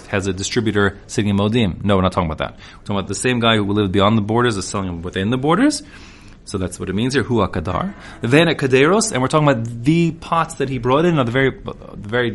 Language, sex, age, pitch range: English, male, 30-49, 95-125 Hz